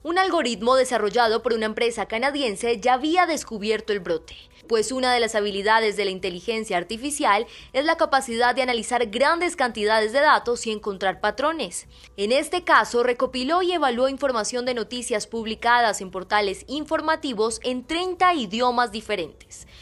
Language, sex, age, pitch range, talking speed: Spanish, female, 20-39, 225-280 Hz, 150 wpm